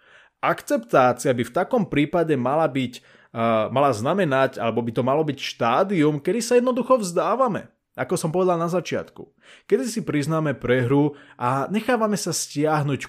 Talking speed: 150 wpm